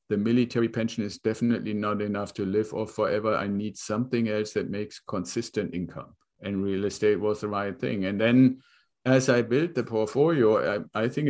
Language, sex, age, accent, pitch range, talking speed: English, male, 50-69, German, 100-120 Hz, 190 wpm